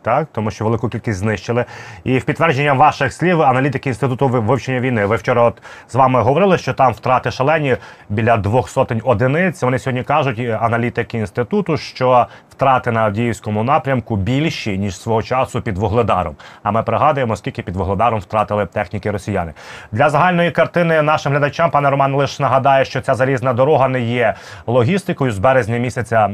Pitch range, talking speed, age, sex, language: 110-140 Hz, 165 wpm, 30-49, male, Ukrainian